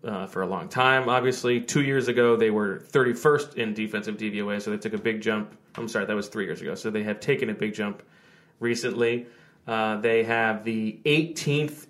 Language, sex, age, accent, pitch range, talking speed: English, male, 30-49, American, 110-135 Hz, 205 wpm